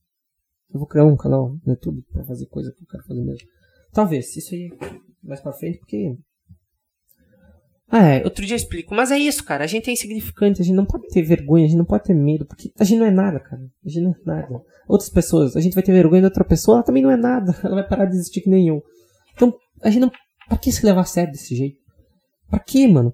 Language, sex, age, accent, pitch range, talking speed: Portuguese, male, 20-39, Brazilian, 145-190 Hz, 250 wpm